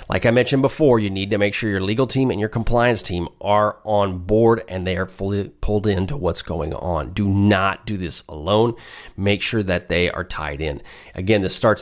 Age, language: 40-59, English